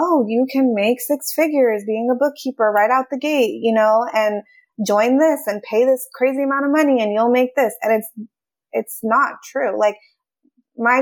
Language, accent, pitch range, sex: English, American, 210-250 Hz, female